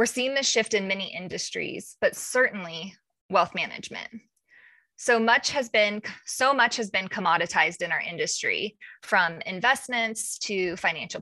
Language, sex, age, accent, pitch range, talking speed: English, female, 20-39, American, 190-235 Hz, 145 wpm